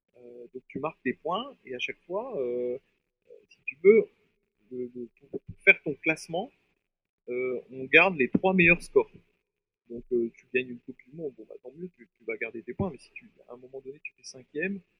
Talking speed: 210 wpm